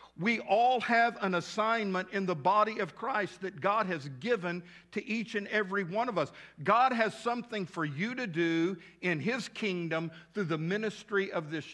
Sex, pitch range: male, 165-220 Hz